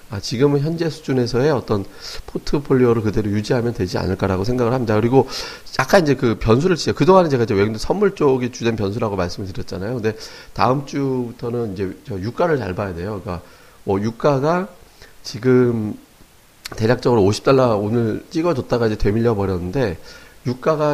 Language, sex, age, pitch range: Korean, male, 40-59, 105-145 Hz